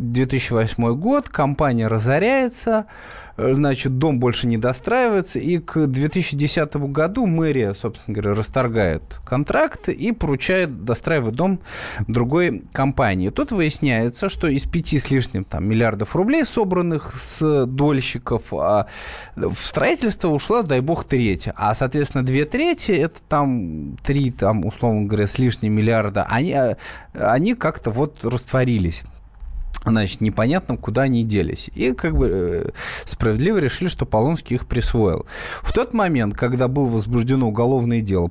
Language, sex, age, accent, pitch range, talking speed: Russian, male, 20-39, native, 115-160 Hz, 130 wpm